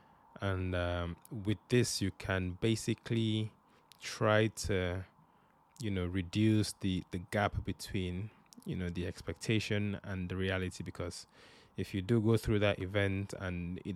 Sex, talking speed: male, 140 wpm